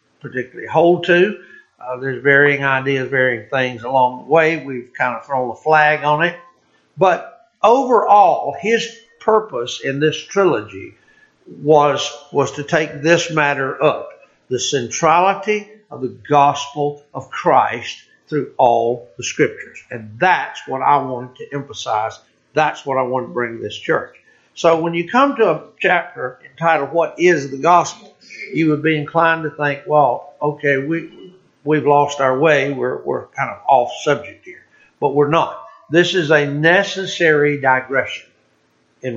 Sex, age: male, 60-79